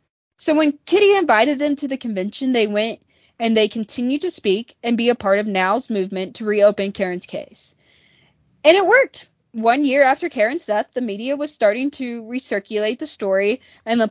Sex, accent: female, American